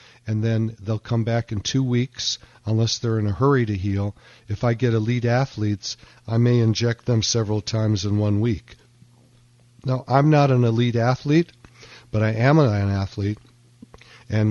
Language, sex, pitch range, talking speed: English, male, 105-125 Hz, 170 wpm